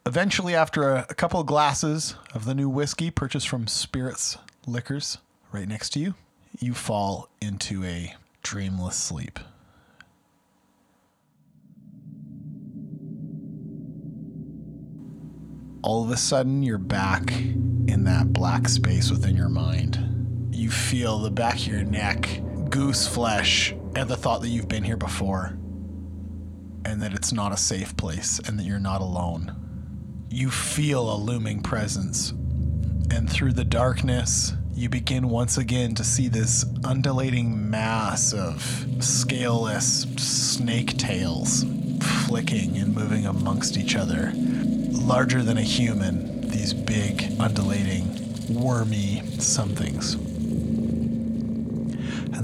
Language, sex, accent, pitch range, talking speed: English, male, American, 100-125 Hz, 120 wpm